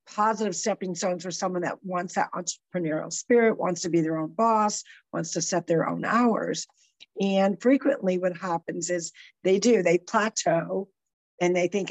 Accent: American